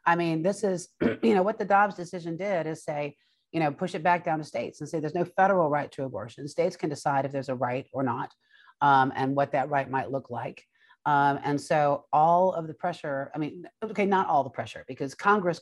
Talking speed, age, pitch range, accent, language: 240 wpm, 30-49, 130-170 Hz, American, English